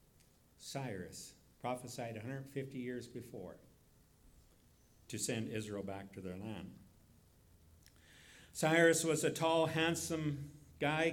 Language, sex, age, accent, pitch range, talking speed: English, male, 50-69, American, 120-155 Hz, 95 wpm